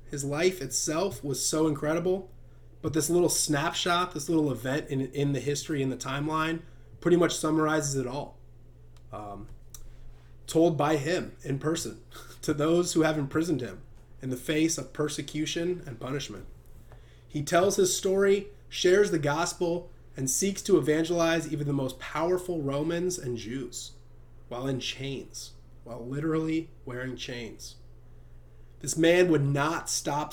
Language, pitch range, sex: English, 120-165 Hz, male